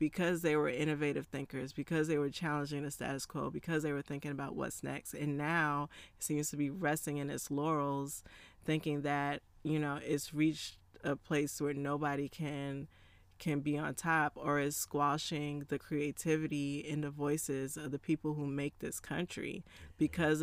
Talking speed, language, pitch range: 175 wpm, English, 145-175 Hz